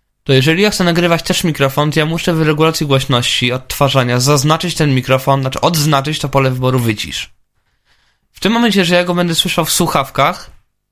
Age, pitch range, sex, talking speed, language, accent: 20-39, 120-155 Hz, male, 180 wpm, Polish, native